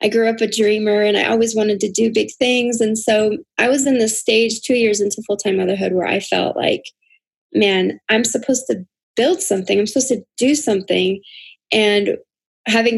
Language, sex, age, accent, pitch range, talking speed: English, female, 20-39, American, 195-235 Hz, 200 wpm